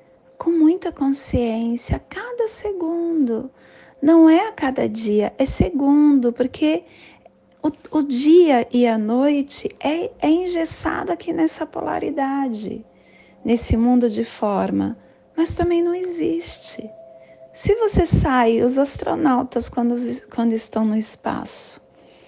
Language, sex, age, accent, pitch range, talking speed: Portuguese, female, 30-49, Brazilian, 215-315 Hz, 120 wpm